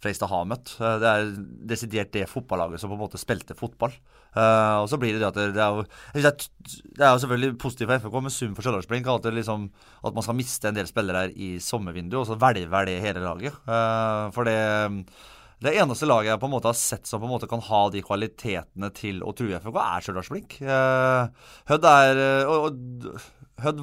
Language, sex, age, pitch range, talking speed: English, male, 30-49, 110-135 Hz, 220 wpm